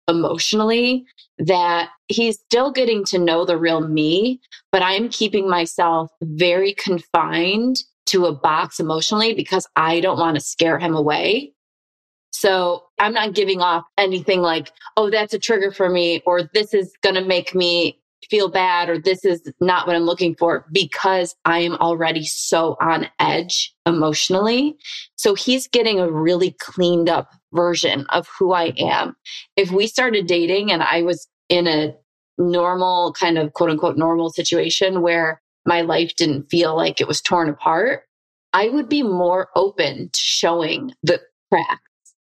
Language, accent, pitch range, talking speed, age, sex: English, American, 165-195 Hz, 160 wpm, 20-39, female